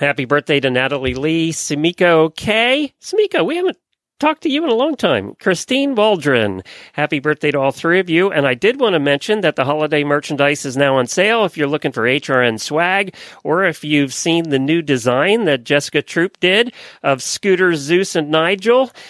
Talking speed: 195 wpm